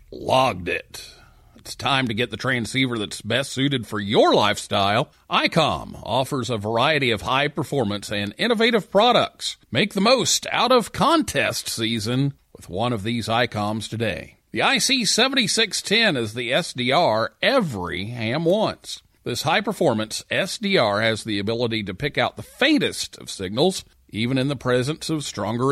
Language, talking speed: English, 145 wpm